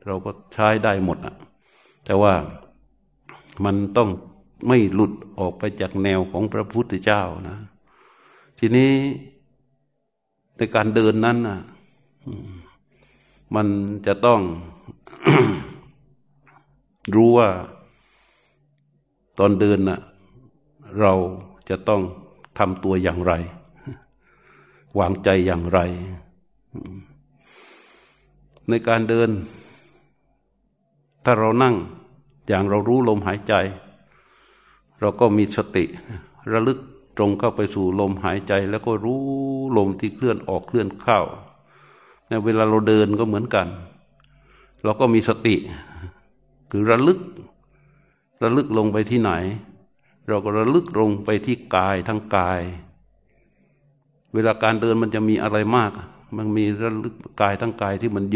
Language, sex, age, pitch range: Thai, male, 60-79, 100-125 Hz